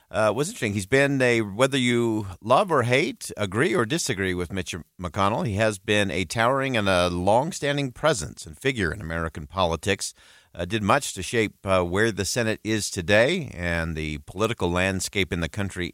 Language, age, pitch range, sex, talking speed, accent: English, 50-69, 90-115 Hz, male, 180 wpm, American